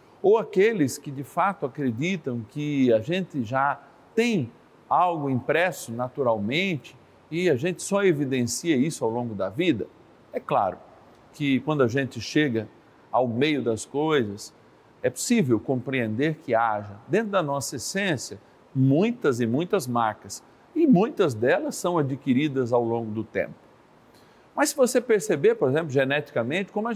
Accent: Brazilian